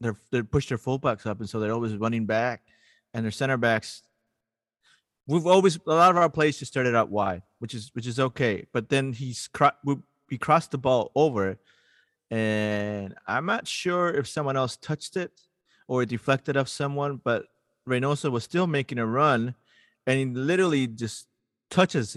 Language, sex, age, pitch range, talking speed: English, male, 30-49, 115-145 Hz, 185 wpm